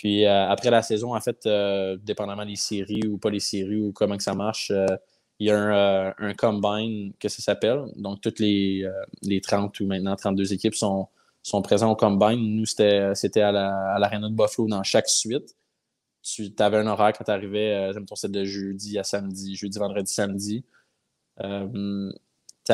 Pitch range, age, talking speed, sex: 100-105 Hz, 20-39, 200 wpm, male